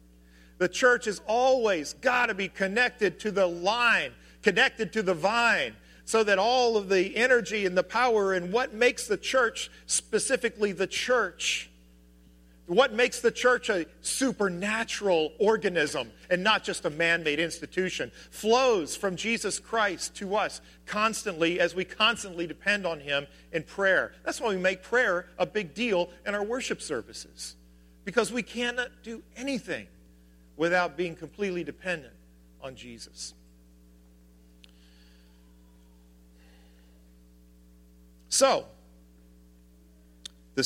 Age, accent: 40-59, American